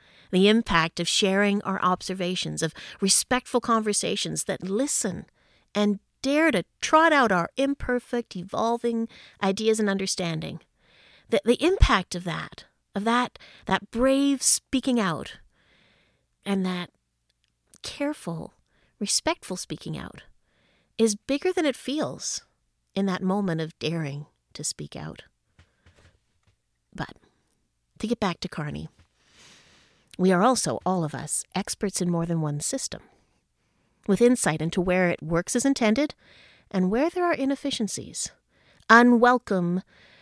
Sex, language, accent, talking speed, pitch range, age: female, English, American, 125 wpm, 170-235 Hz, 40-59